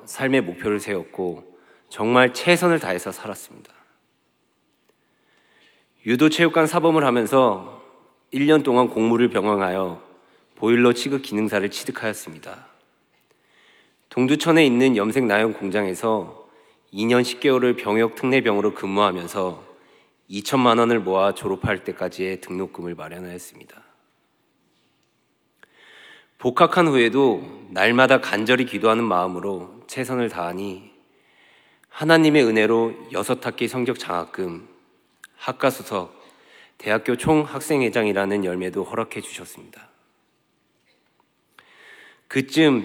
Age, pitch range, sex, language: 40-59, 100-130 Hz, male, Korean